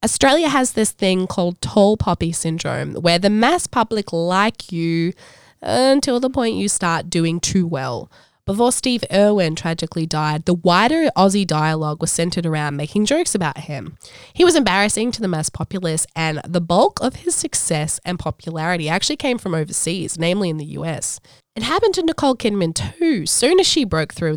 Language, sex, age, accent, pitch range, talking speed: English, female, 20-39, Australian, 160-210 Hz, 175 wpm